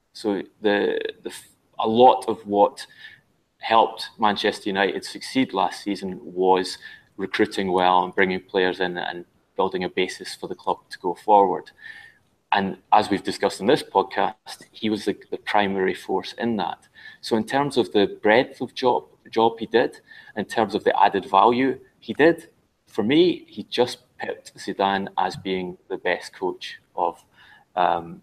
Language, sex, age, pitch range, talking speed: English, male, 30-49, 95-125 Hz, 165 wpm